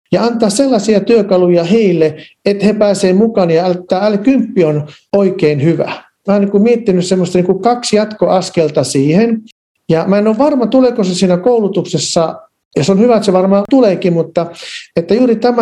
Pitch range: 170-210 Hz